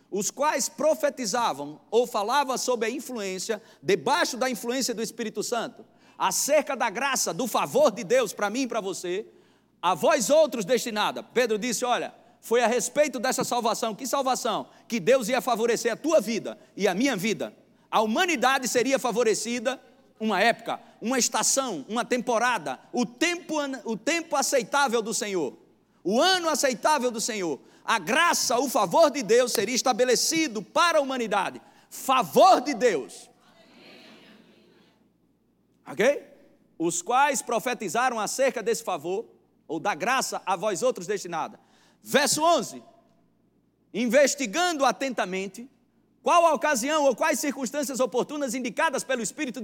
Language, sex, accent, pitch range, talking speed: Portuguese, male, Brazilian, 230-290 Hz, 140 wpm